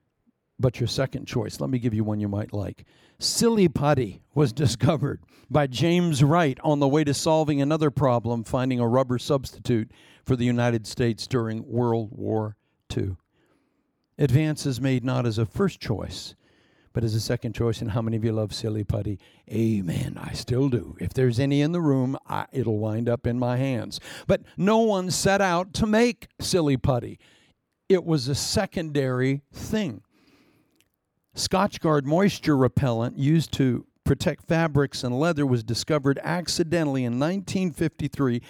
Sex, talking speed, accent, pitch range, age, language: male, 160 wpm, American, 120-160 Hz, 60-79, English